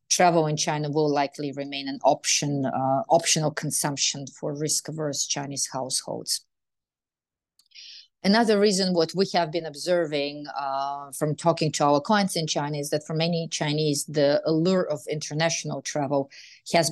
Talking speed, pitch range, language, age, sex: 145 wpm, 140-160 Hz, English, 30-49, female